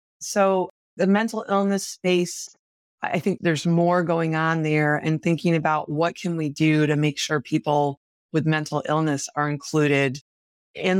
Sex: female